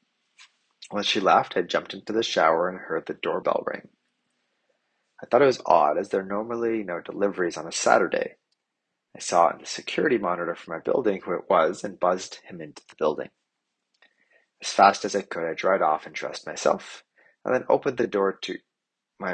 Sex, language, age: male, English, 30-49